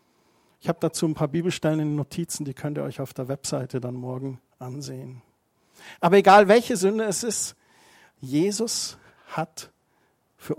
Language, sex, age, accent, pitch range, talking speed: German, male, 50-69, German, 150-200 Hz, 160 wpm